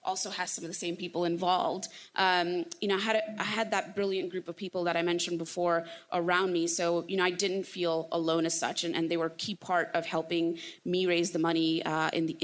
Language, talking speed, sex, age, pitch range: English, 250 wpm, female, 20-39, 165-190 Hz